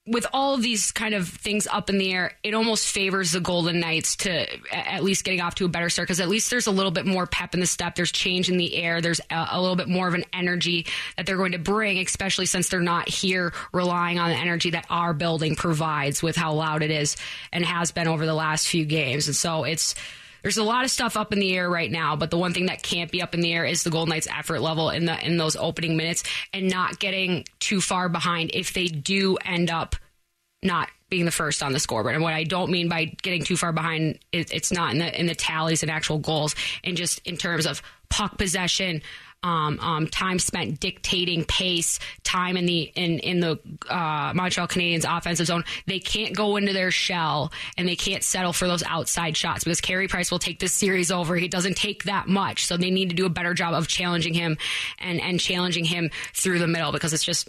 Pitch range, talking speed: 165-185 Hz, 240 wpm